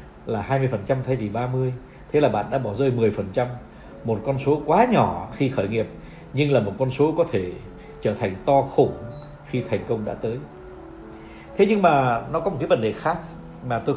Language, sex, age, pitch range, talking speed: Vietnamese, male, 60-79, 110-150 Hz, 205 wpm